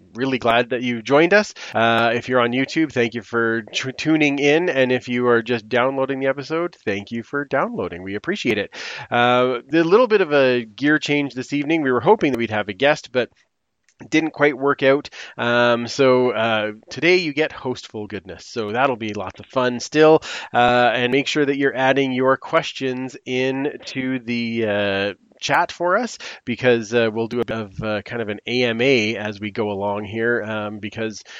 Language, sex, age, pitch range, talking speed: English, male, 30-49, 115-140 Hz, 195 wpm